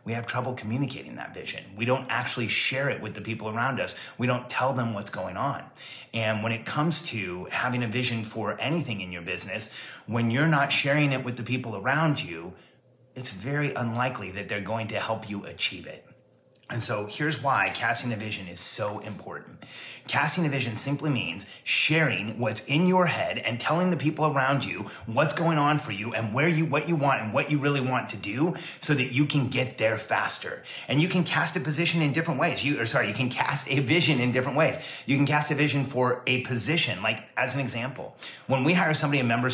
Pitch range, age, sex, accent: 115-145 Hz, 30-49, male, American